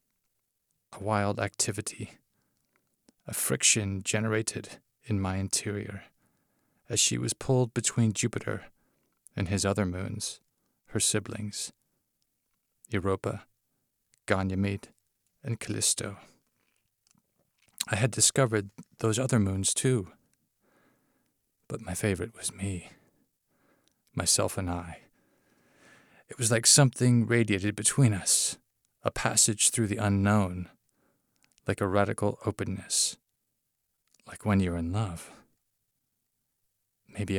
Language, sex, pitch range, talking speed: Danish, male, 95-115 Hz, 100 wpm